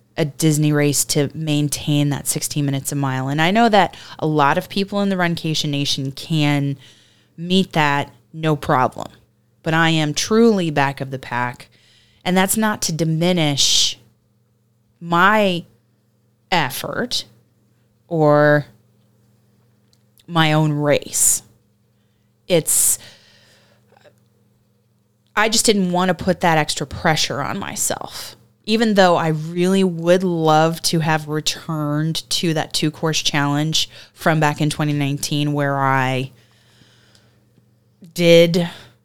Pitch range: 115-165 Hz